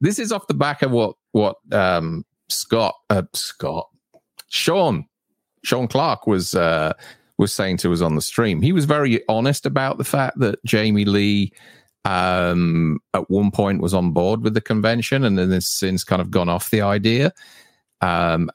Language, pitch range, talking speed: English, 90-115 Hz, 180 wpm